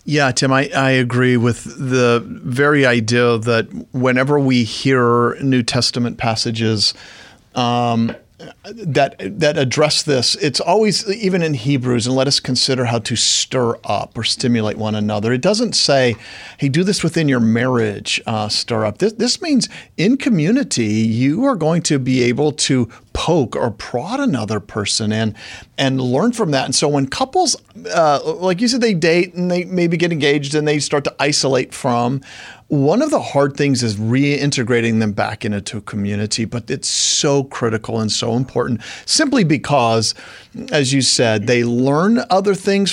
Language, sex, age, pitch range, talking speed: English, male, 40-59, 115-150 Hz, 170 wpm